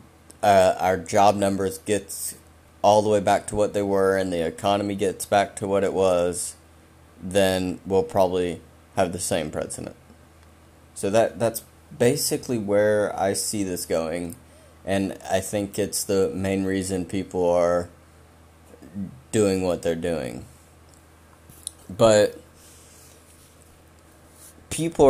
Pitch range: 80-100 Hz